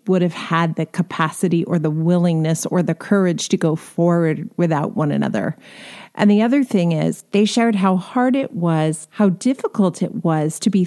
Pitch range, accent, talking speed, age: 170-220 Hz, American, 190 wpm, 40-59